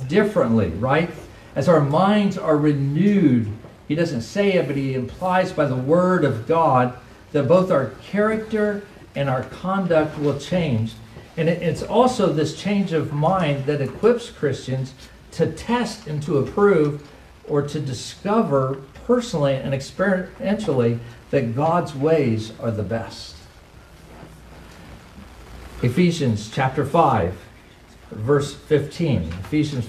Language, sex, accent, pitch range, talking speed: English, male, American, 125-170 Hz, 120 wpm